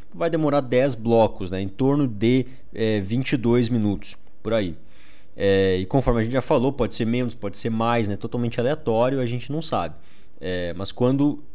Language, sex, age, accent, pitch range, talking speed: Portuguese, male, 20-39, Brazilian, 115-145 Hz, 170 wpm